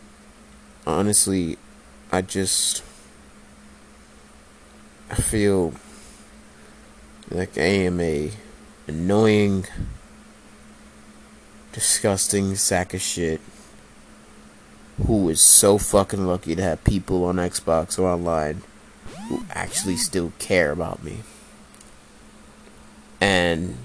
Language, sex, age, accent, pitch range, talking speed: English, male, 20-39, American, 80-100 Hz, 85 wpm